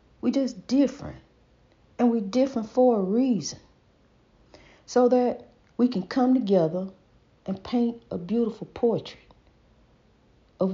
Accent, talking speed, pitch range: American, 115 wpm, 145-210 Hz